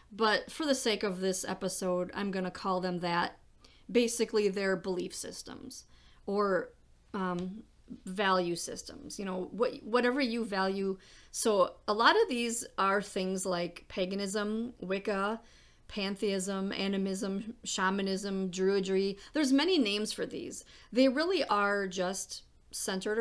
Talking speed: 130 wpm